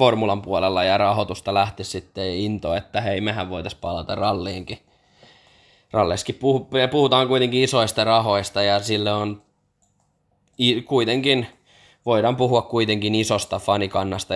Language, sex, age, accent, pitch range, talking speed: Finnish, male, 20-39, native, 95-120 Hz, 115 wpm